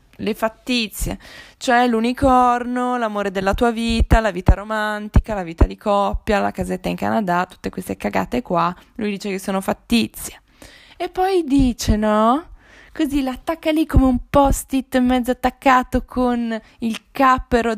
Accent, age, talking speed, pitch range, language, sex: native, 20-39, 145 wpm, 195-260 Hz, Italian, female